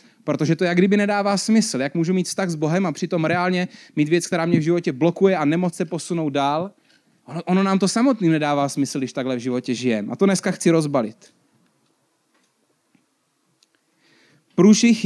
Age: 30-49